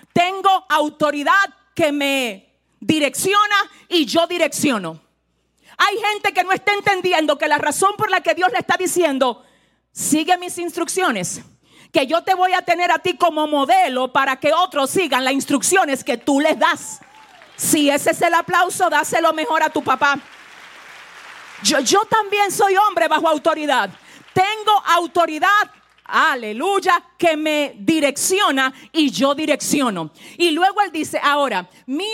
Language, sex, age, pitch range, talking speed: Spanish, female, 40-59, 280-365 Hz, 150 wpm